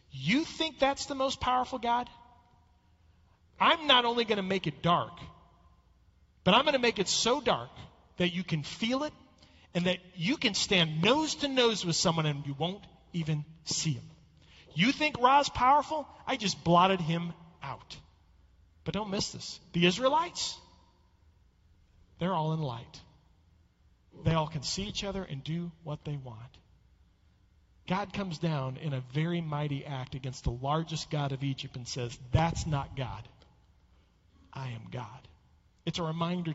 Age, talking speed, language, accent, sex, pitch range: 40-59, 165 wpm, English, American, male, 125-200 Hz